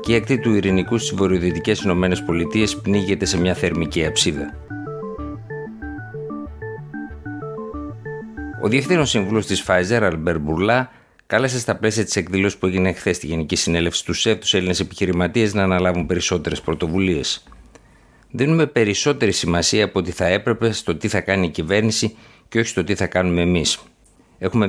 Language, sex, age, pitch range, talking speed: Greek, male, 50-69, 85-110 Hz, 130 wpm